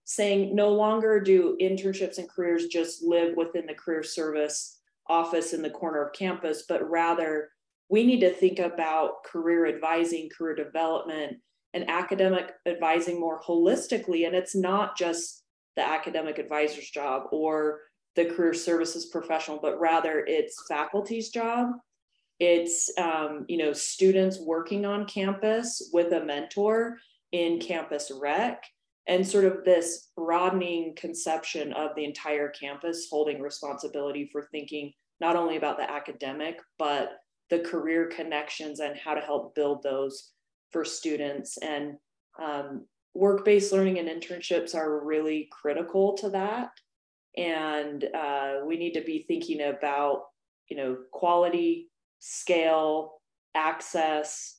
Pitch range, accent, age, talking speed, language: 150-185 Hz, American, 20-39, 135 wpm, English